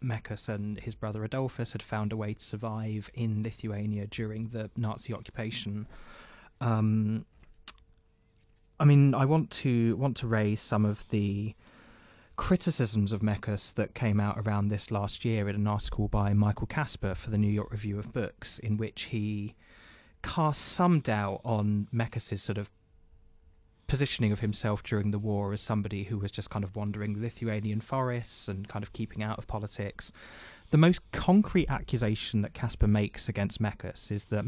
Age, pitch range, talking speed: 20-39, 105-115 Hz, 165 wpm